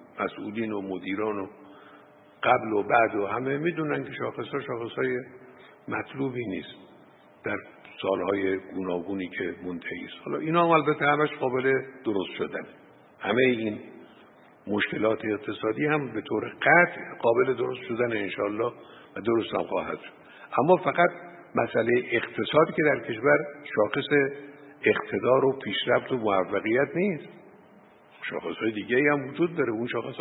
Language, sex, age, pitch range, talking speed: Persian, male, 50-69, 115-160 Hz, 135 wpm